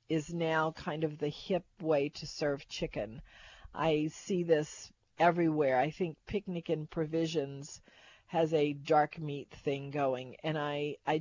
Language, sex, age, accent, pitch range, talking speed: English, female, 50-69, American, 150-185 Hz, 150 wpm